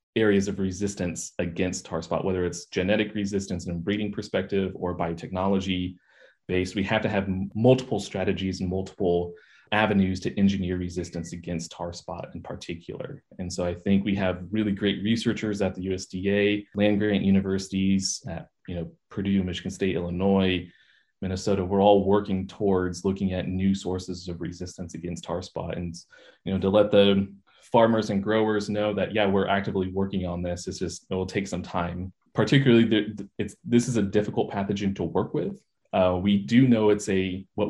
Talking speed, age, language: 175 wpm, 20-39, English